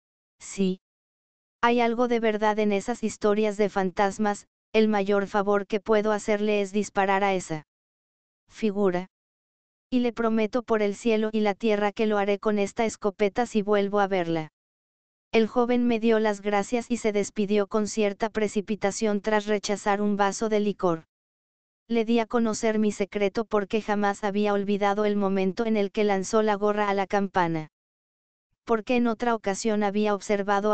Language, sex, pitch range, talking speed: Spanish, female, 200-220 Hz, 165 wpm